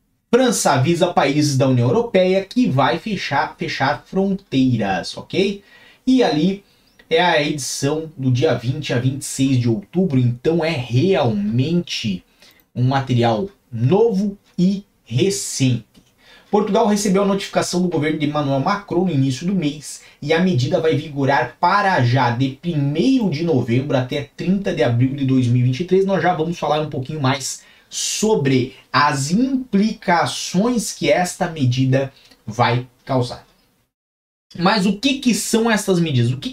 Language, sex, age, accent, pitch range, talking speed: Portuguese, male, 30-49, Brazilian, 130-200 Hz, 140 wpm